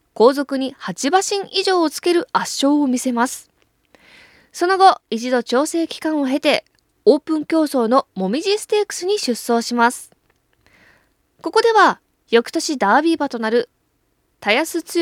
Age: 20-39